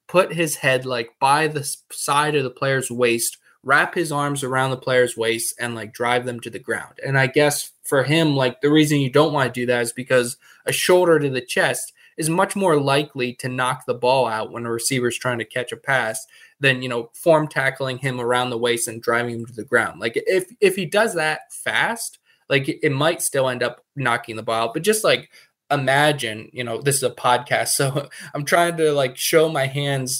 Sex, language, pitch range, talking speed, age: male, English, 125-150 Hz, 225 wpm, 20-39